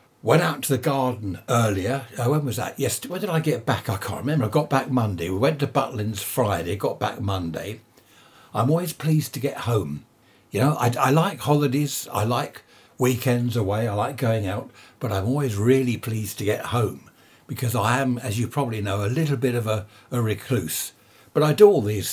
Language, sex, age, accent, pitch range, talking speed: English, male, 60-79, British, 110-140 Hz, 210 wpm